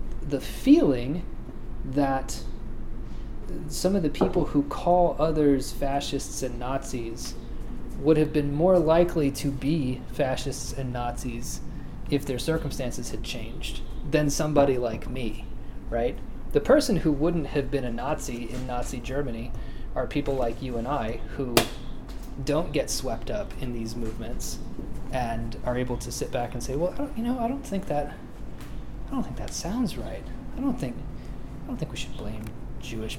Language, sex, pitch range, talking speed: English, male, 120-145 Hz, 160 wpm